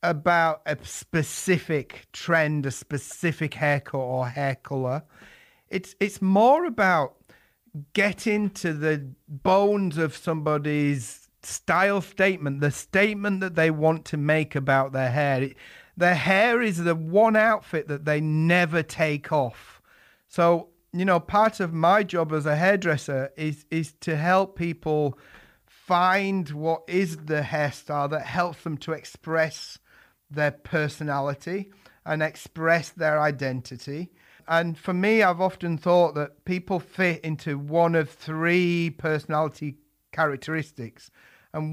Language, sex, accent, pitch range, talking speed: English, male, British, 145-180 Hz, 130 wpm